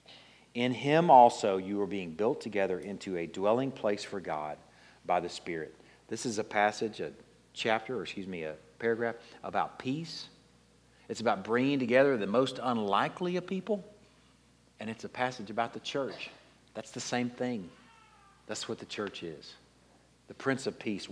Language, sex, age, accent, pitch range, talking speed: English, male, 50-69, American, 105-150 Hz, 170 wpm